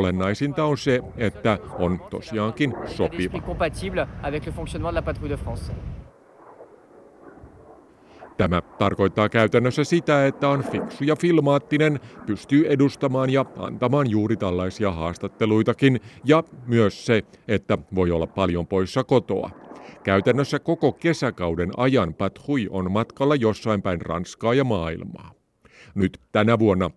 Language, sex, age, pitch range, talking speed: Finnish, male, 50-69, 95-130 Hz, 105 wpm